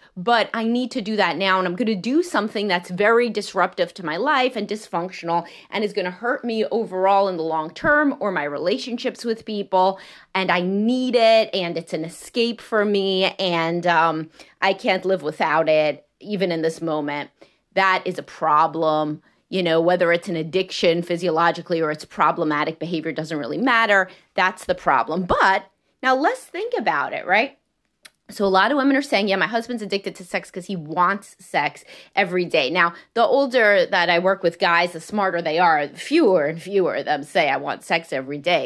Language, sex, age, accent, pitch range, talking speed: English, female, 30-49, American, 165-215 Hz, 200 wpm